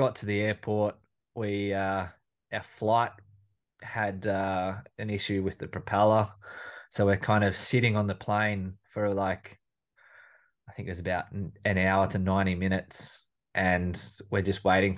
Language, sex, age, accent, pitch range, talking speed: English, male, 20-39, Australian, 90-105 Hz, 155 wpm